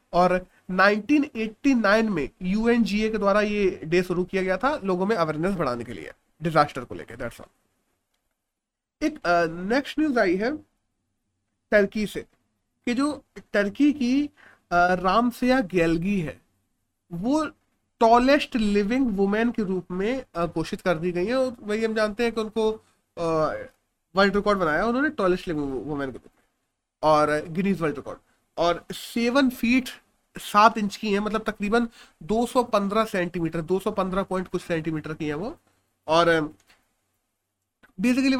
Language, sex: Hindi, male